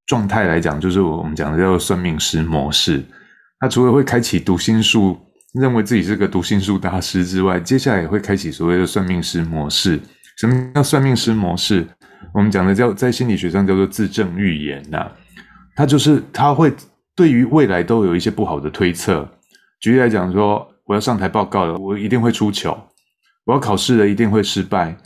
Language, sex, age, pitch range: Chinese, male, 20-39, 95-125 Hz